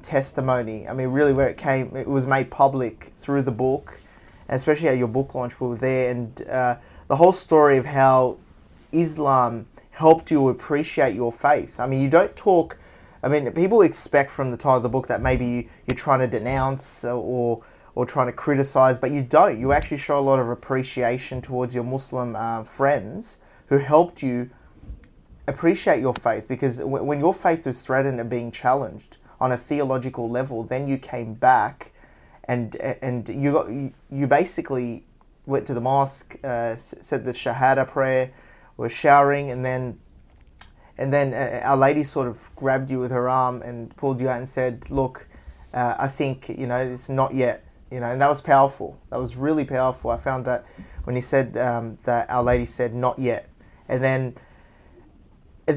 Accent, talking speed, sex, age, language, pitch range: Australian, 185 wpm, male, 20-39, English, 125-140 Hz